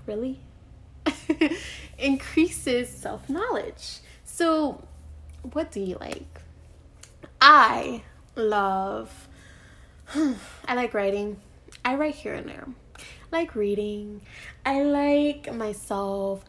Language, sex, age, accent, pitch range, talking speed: English, female, 10-29, American, 200-275 Hz, 85 wpm